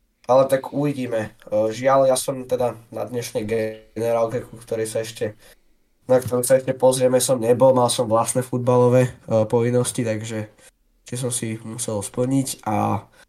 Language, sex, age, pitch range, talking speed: Slovak, male, 20-39, 105-130 Hz, 150 wpm